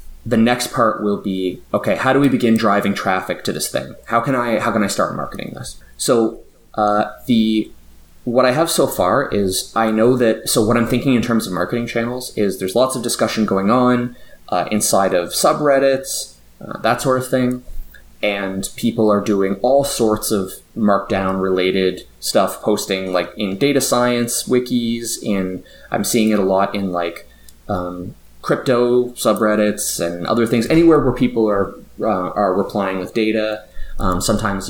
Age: 20-39